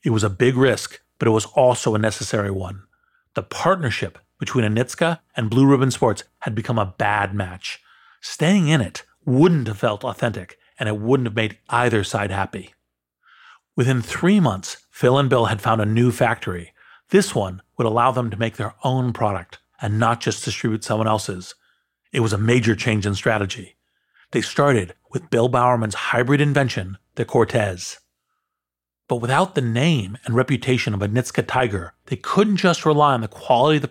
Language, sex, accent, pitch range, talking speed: English, male, American, 105-135 Hz, 180 wpm